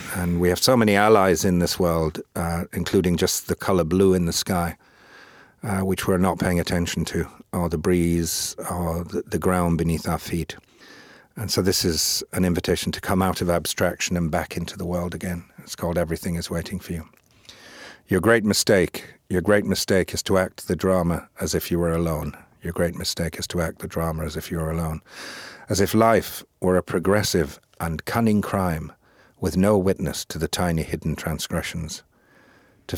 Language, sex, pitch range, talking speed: English, male, 85-95 Hz, 190 wpm